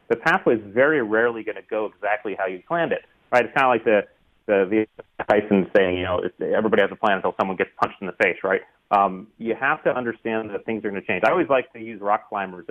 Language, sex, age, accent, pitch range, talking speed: English, male, 30-49, American, 105-135 Hz, 265 wpm